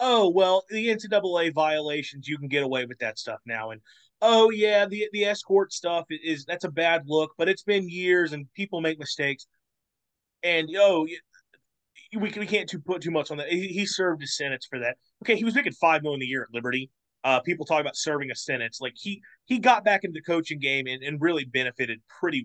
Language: English